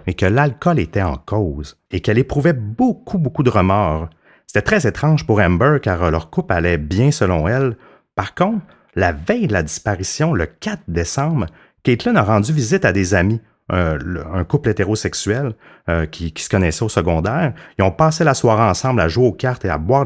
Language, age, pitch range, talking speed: French, 30-49, 85-120 Hz, 190 wpm